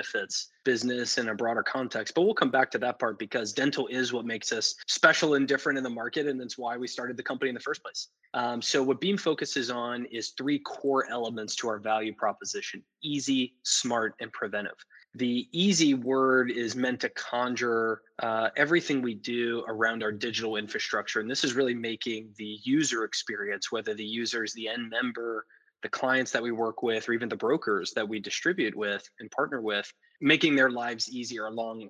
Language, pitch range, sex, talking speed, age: English, 115-135 Hz, male, 200 wpm, 20-39